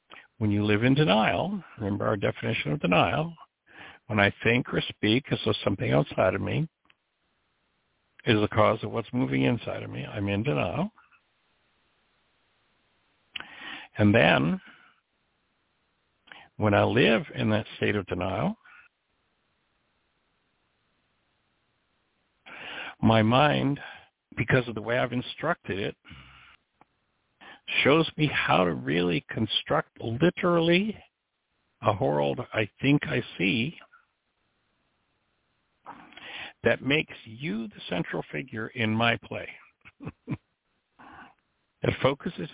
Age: 60-79